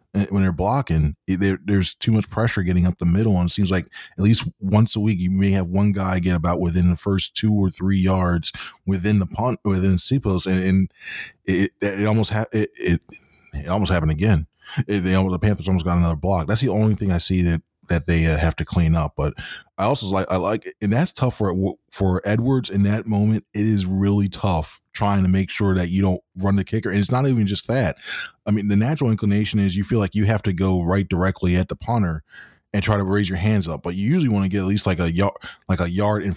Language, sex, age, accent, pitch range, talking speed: English, male, 20-39, American, 90-105 Hz, 250 wpm